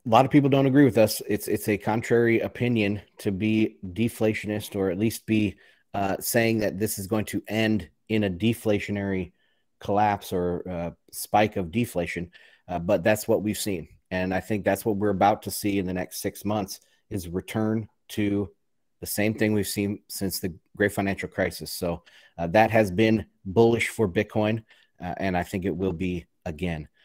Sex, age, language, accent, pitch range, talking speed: male, 30-49, English, American, 95-110 Hz, 190 wpm